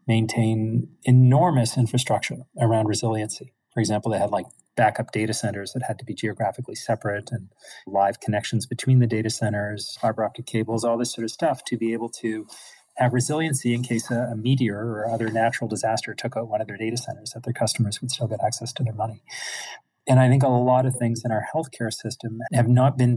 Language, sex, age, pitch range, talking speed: English, male, 40-59, 105-125 Hz, 205 wpm